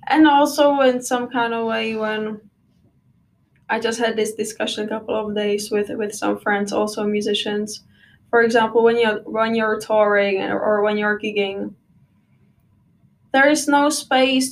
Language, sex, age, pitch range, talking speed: English, female, 10-29, 210-235 Hz, 160 wpm